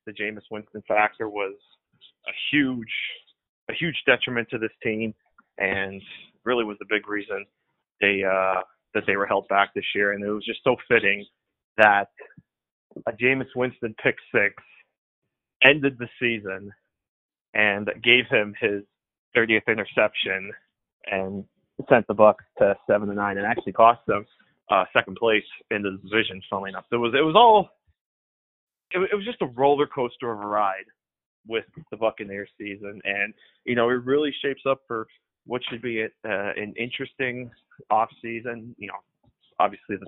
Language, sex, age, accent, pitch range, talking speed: English, male, 30-49, American, 100-120 Hz, 160 wpm